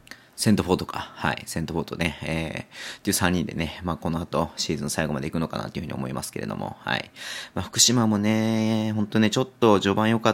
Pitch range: 90-125 Hz